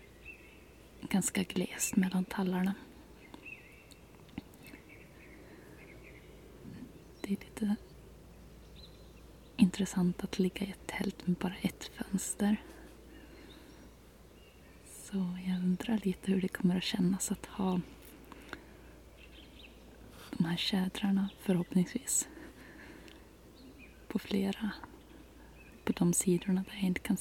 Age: 20-39